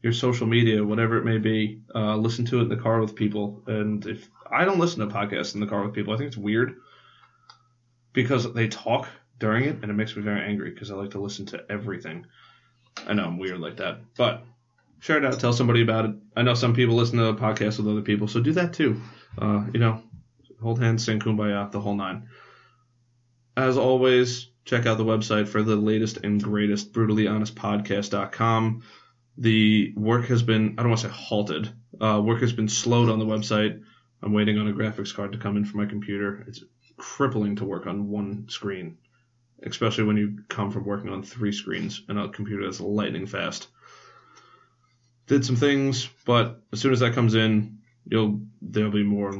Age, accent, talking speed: 20-39, American, 205 wpm